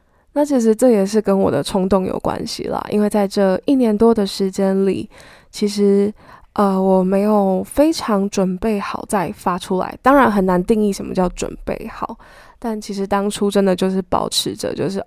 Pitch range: 185-215 Hz